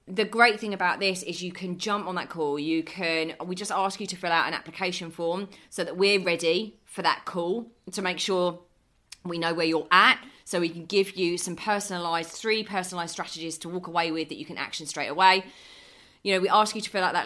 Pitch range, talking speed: 160-190 Hz, 235 wpm